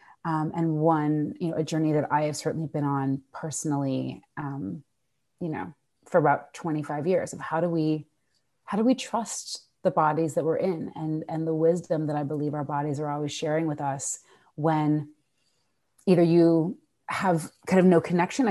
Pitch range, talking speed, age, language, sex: 150-180 Hz, 180 wpm, 30-49, English, female